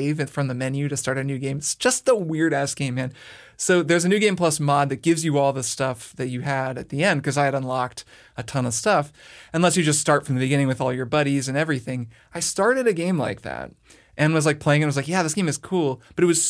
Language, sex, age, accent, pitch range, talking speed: English, male, 20-39, American, 130-165 Hz, 275 wpm